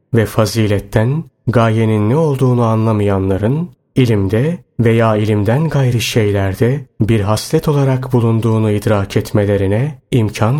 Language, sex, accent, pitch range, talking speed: Turkish, male, native, 105-135 Hz, 100 wpm